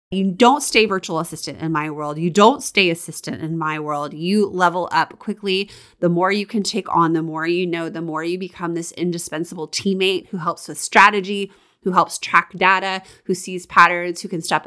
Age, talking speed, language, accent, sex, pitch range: 30-49, 205 wpm, English, American, female, 170-215 Hz